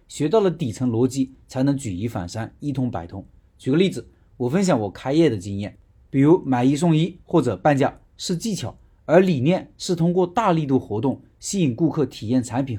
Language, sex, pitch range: Chinese, male, 115-170 Hz